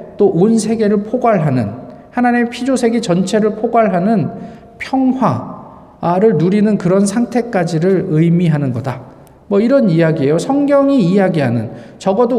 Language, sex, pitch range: Korean, male, 160-225 Hz